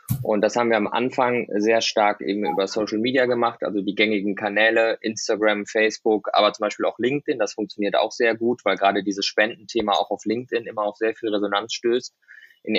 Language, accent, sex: German, German, male